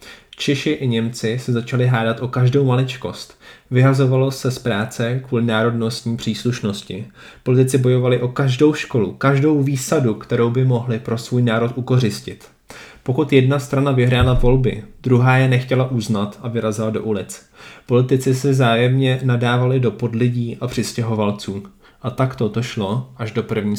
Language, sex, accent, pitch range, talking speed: Czech, male, native, 115-130 Hz, 145 wpm